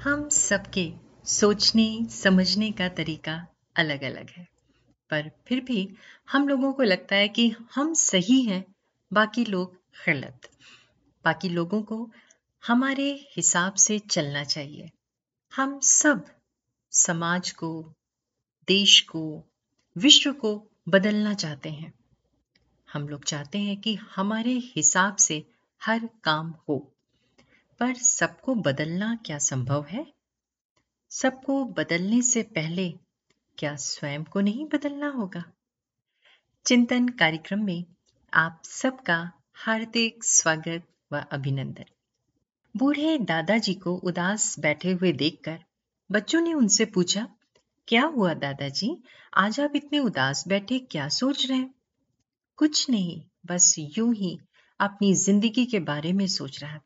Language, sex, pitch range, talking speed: Hindi, female, 160-235 Hz, 120 wpm